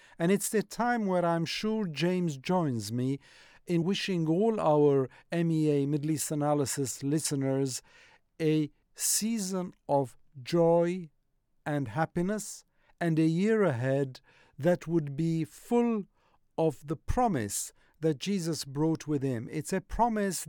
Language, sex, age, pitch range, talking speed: English, male, 50-69, 145-175 Hz, 130 wpm